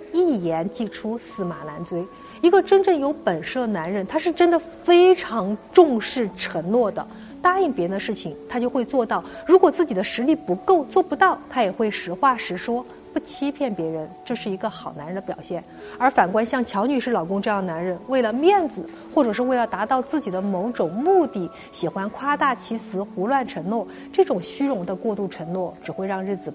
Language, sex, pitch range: Chinese, female, 190-270 Hz